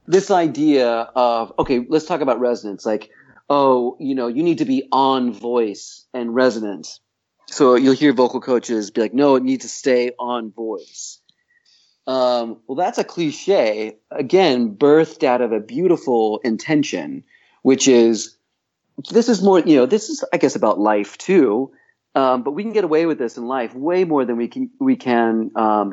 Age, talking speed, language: 30-49, 180 wpm, English